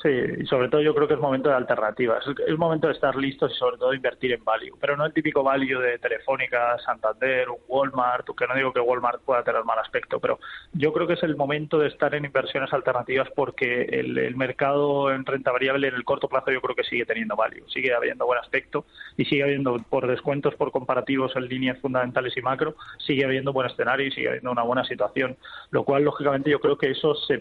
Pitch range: 130-150 Hz